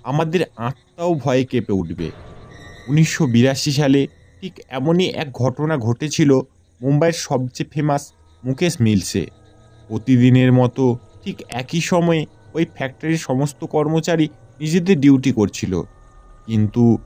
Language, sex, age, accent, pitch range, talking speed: Bengali, male, 30-49, native, 110-165 Hz, 105 wpm